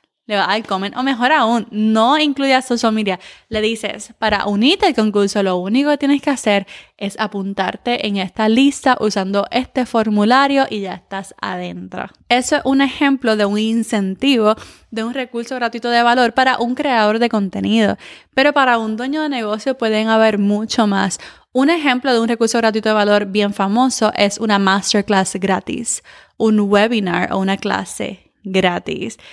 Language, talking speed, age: Spanish, 170 wpm, 20-39